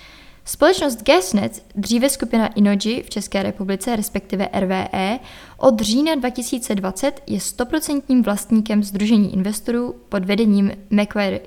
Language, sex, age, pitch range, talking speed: Czech, female, 20-39, 200-250 Hz, 110 wpm